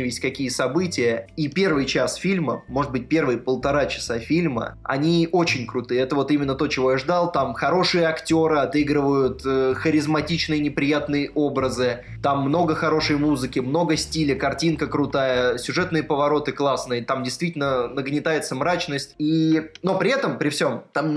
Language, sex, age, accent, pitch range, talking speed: Russian, male, 20-39, native, 130-160 Hz, 145 wpm